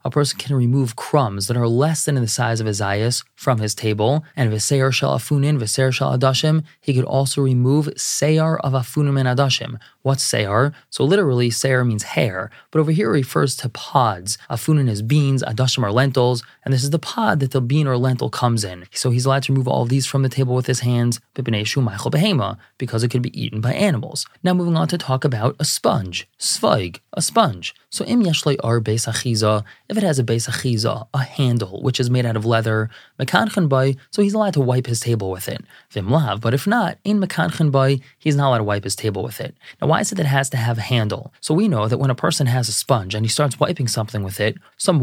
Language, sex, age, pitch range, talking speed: English, male, 20-39, 115-145 Hz, 220 wpm